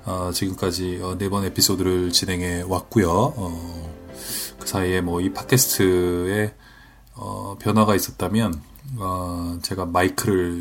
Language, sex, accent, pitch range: Korean, male, native, 85-110 Hz